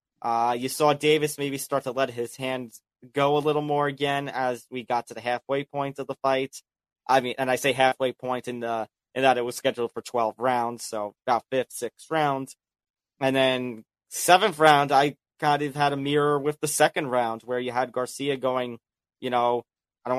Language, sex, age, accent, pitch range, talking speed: English, male, 20-39, American, 125-145 Hz, 210 wpm